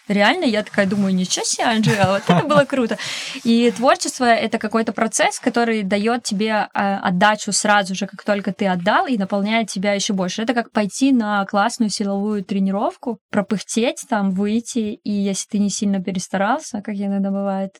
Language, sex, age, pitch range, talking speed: Russian, female, 20-39, 195-220 Hz, 170 wpm